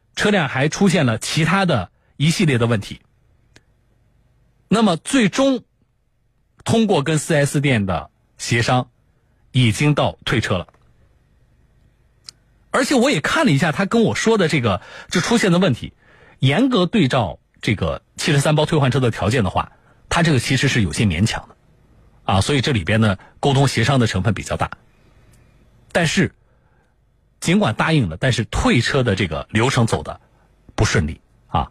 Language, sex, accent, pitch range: Chinese, male, native, 110-155 Hz